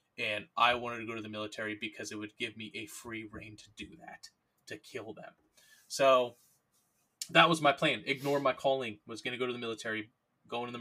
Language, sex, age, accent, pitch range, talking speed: English, male, 20-39, American, 105-120 Hz, 220 wpm